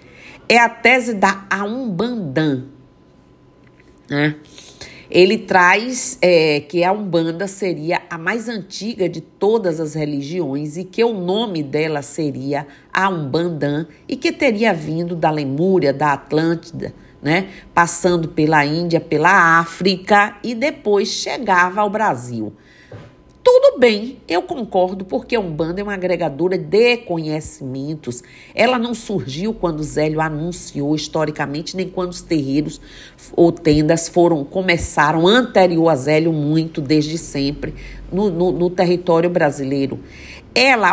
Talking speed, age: 125 wpm, 50-69